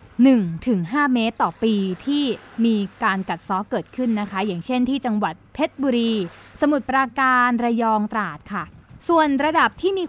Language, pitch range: Thai, 205-275 Hz